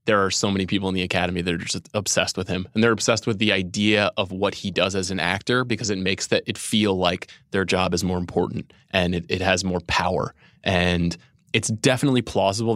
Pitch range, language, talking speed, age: 95-115 Hz, English, 225 wpm, 20-39